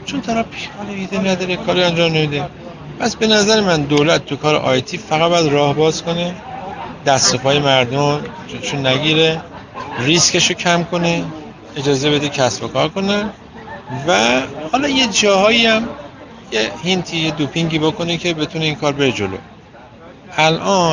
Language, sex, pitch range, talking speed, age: Persian, male, 135-175 Hz, 150 wpm, 50-69